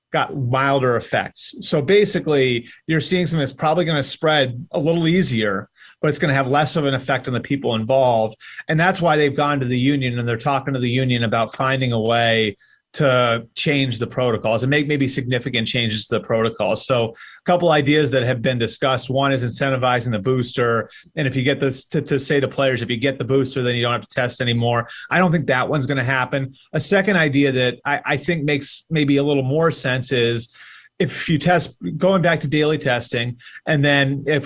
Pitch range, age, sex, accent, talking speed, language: 120-145 Hz, 30-49, male, American, 220 wpm, English